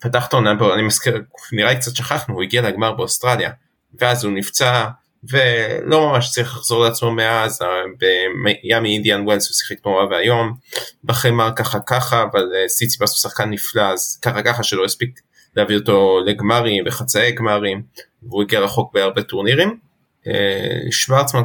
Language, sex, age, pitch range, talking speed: Hebrew, male, 20-39, 105-125 Hz, 145 wpm